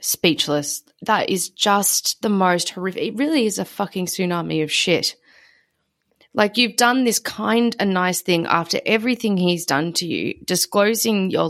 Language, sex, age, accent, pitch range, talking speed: English, female, 20-39, Australian, 170-220 Hz, 160 wpm